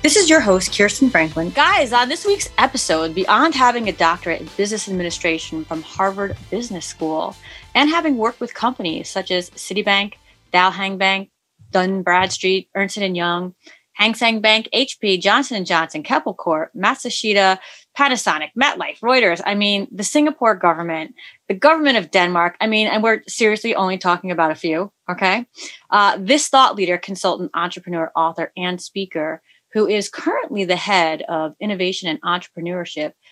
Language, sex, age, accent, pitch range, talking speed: English, female, 30-49, American, 175-245 Hz, 160 wpm